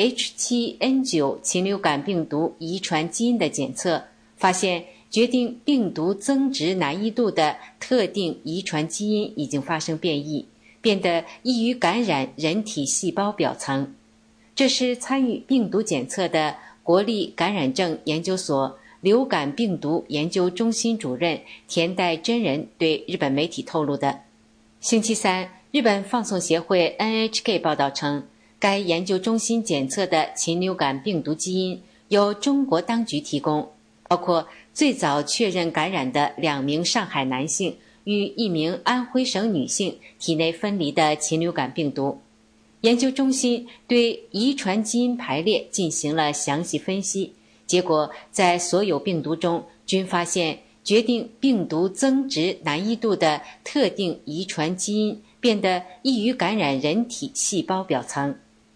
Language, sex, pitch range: English, female, 155-230 Hz